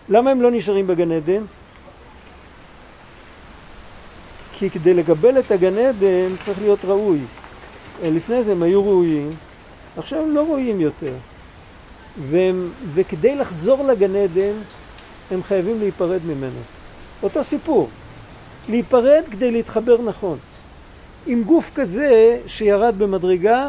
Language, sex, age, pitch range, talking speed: Hebrew, male, 50-69, 165-235 Hz, 115 wpm